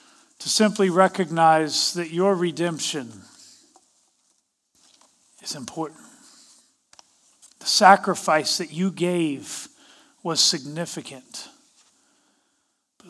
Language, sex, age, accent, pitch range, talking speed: English, male, 40-59, American, 165-265 Hz, 75 wpm